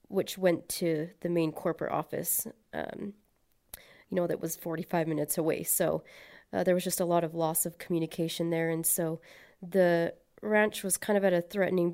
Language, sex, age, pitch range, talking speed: English, female, 30-49, 170-190 Hz, 185 wpm